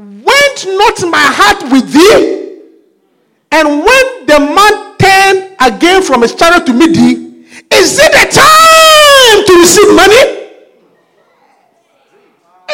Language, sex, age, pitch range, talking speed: English, male, 50-69, 340-435 Hz, 115 wpm